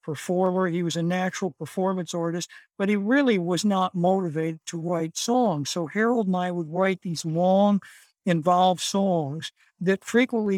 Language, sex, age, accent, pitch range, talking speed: English, male, 60-79, American, 170-200 Hz, 160 wpm